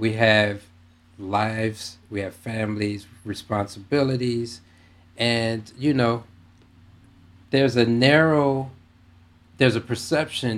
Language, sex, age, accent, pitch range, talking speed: English, male, 40-59, American, 90-120 Hz, 90 wpm